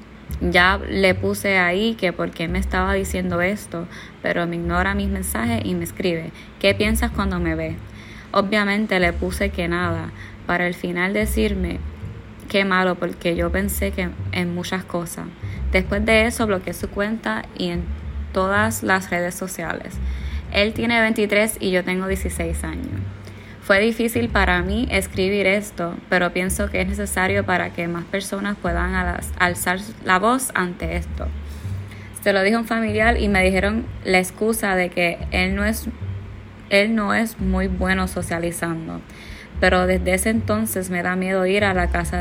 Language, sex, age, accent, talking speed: Spanish, female, 20-39, American, 165 wpm